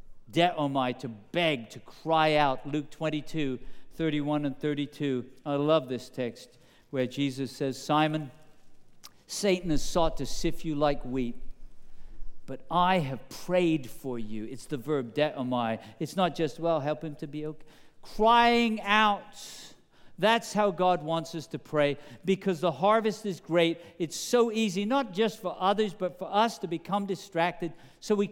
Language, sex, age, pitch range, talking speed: English, male, 50-69, 140-190 Hz, 160 wpm